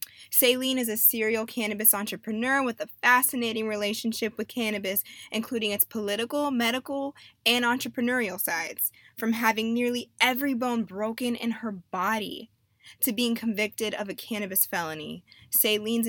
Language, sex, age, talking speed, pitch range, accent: English, female, 20-39, 135 wpm, 200-245 Hz, American